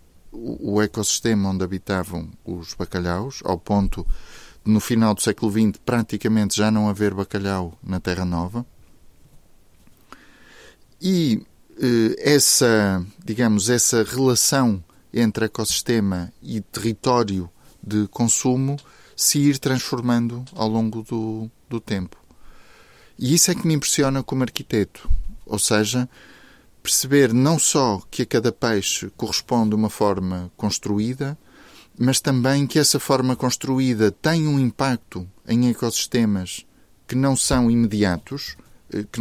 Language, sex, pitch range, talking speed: Portuguese, male, 105-130 Hz, 120 wpm